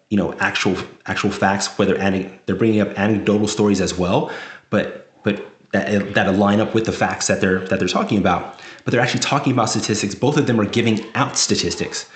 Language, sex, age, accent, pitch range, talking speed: English, male, 30-49, American, 95-115 Hz, 195 wpm